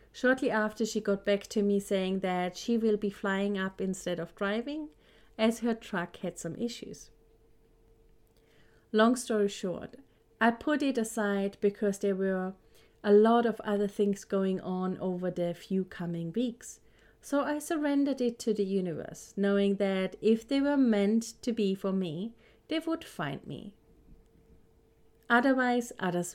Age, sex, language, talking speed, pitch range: 30-49, female, English, 155 wpm, 185-230 Hz